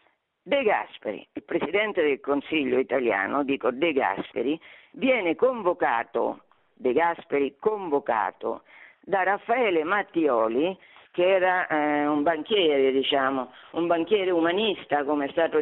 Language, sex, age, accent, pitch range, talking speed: Italian, female, 50-69, native, 140-215 Hz, 115 wpm